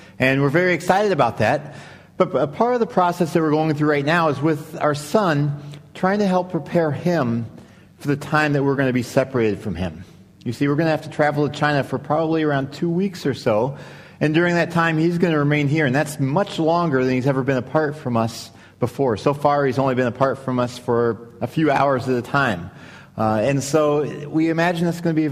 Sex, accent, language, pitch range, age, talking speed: male, American, English, 120-155 Hz, 40-59, 240 wpm